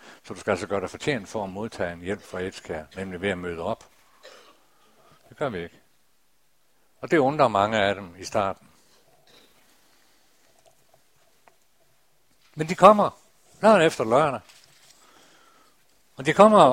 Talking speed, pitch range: 145 wpm, 125-170 Hz